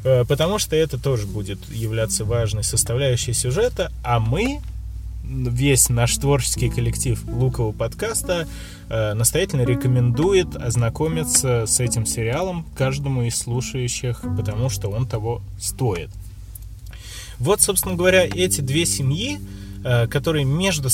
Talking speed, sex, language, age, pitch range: 110 wpm, male, Russian, 20-39, 110-135 Hz